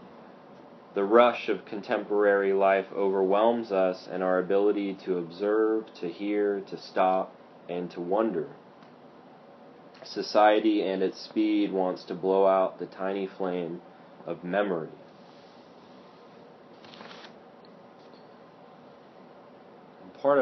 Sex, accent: male, American